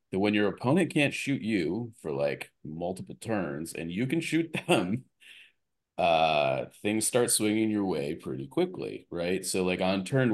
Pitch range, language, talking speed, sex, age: 85-100 Hz, English, 170 wpm, male, 30-49